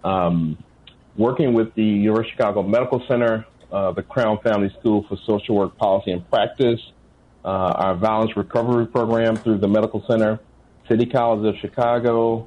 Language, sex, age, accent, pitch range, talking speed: English, male, 40-59, American, 100-115 Hz, 160 wpm